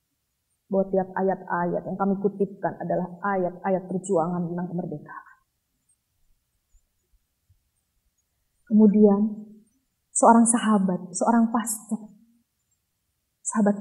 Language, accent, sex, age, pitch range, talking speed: Indonesian, native, female, 20-39, 180-220 Hz, 75 wpm